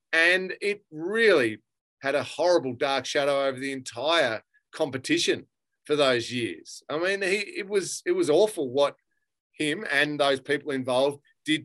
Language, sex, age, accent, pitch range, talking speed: English, male, 30-49, Australian, 135-175 Hz, 155 wpm